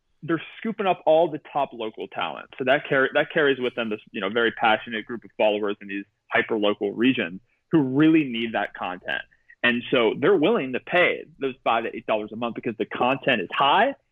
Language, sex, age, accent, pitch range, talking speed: English, male, 30-49, American, 120-165 Hz, 210 wpm